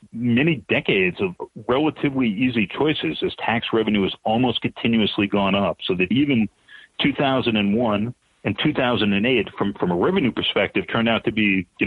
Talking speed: 150 wpm